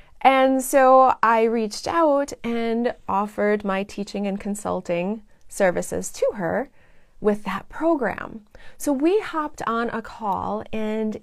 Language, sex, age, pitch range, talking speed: English, female, 20-39, 210-275 Hz, 130 wpm